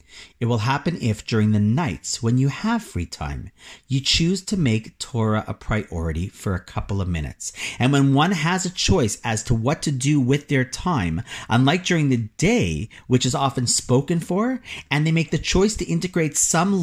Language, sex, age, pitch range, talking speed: English, male, 40-59, 100-145 Hz, 195 wpm